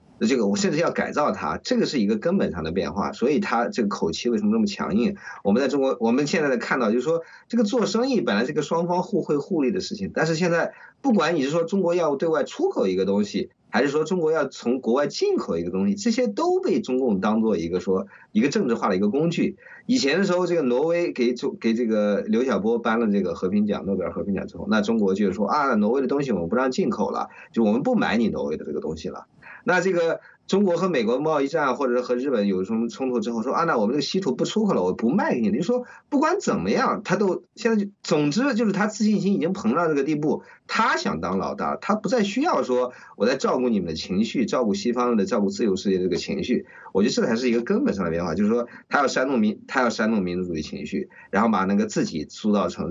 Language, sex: Chinese, male